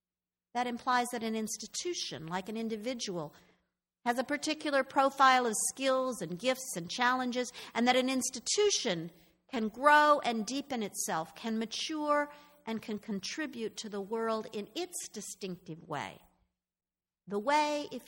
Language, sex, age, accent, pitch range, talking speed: English, female, 50-69, American, 175-250 Hz, 140 wpm